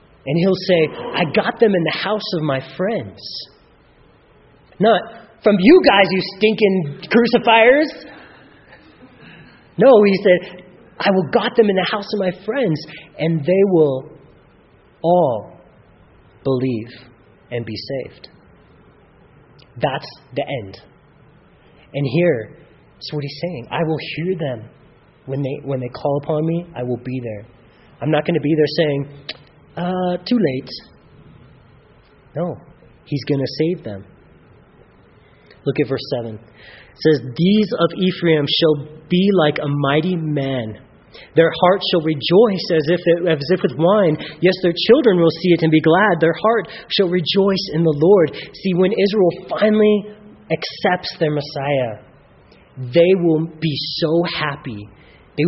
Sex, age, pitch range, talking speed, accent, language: male, 30-49, 140-185 Hz, 145 wpm, American, English